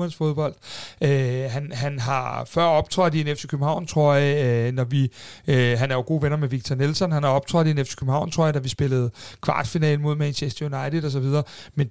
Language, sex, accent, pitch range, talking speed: Danish, male, native, 135-170 Hz, 205 wpm